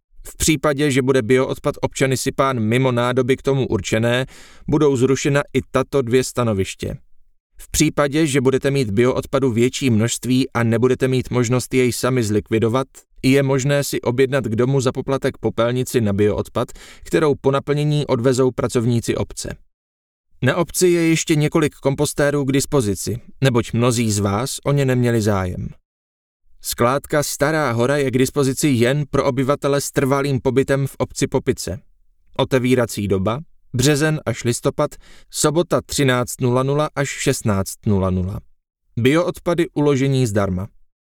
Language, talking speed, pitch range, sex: Czech, 135 wpm, 110-140 Hz, male